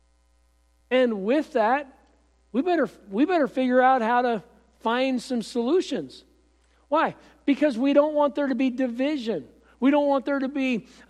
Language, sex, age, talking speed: English, male, 50-69, 155 wpm